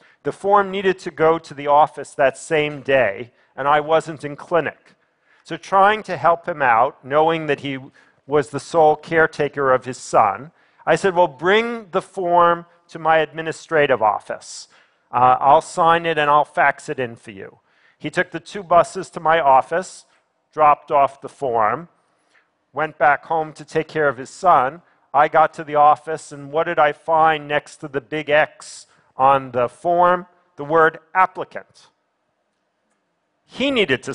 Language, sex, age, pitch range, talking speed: Russian, male, 40-59, 140-175 Hz, 170 wpm